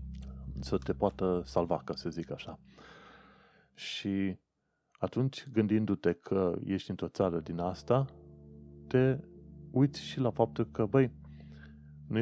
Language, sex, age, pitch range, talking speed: Romanian, male, 30-49, 75-105 Hz, 125 wpm